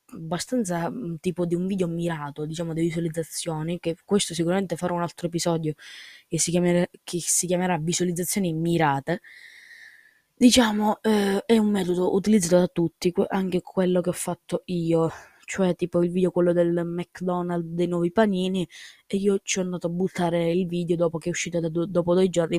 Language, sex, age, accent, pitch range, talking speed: Italian, female, 20-39, native, 165-185 Hz, 175 wpm